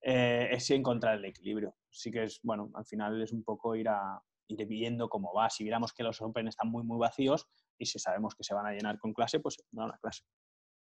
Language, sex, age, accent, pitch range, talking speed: Spanish, male, 20-39, Spanish, 110-130 Hz, 240 wpm